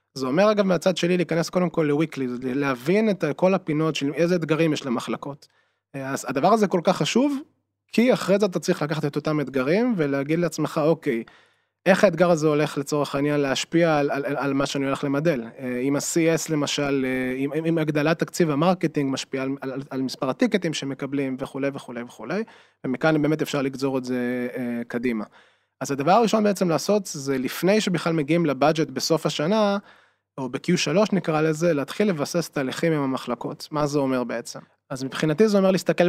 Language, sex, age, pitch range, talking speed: Hebrew, male, 20-39, 130-165 Hz, 175 wpm